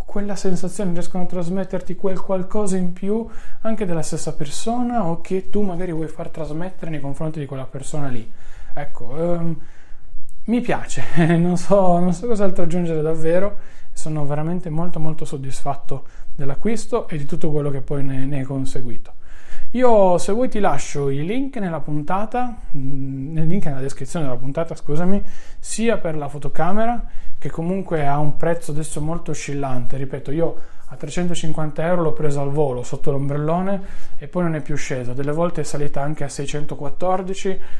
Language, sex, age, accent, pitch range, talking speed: Italian, male, 20-39, native, 140-180 Hz, 165 wpm